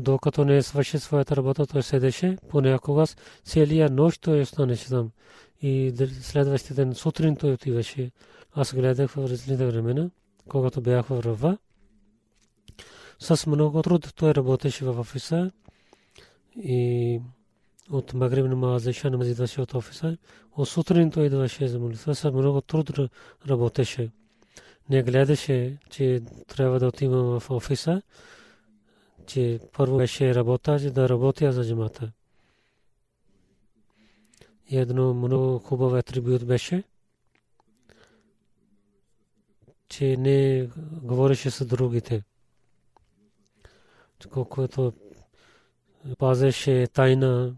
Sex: male